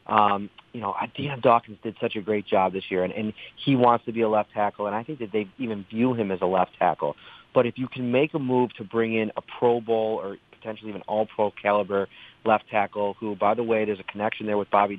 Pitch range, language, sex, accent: 105-120 Hz, English, male, American